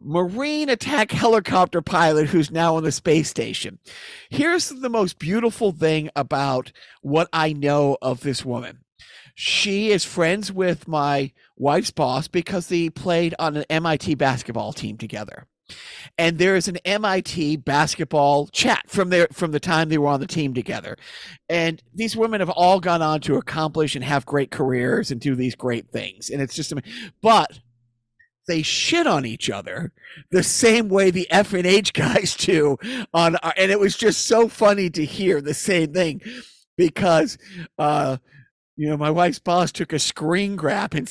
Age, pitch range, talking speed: 50-69, 145-190 Hz, 170 wpm